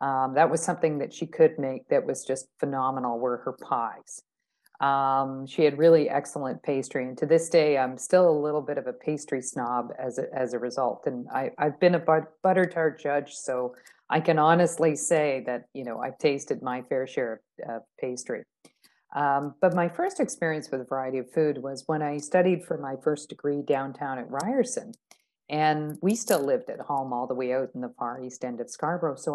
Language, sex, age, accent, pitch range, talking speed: English, female, 40-59, American, 130-175 Hz, 205 wpm